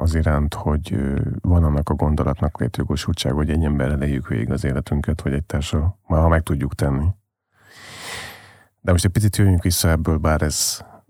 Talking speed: 170 wpm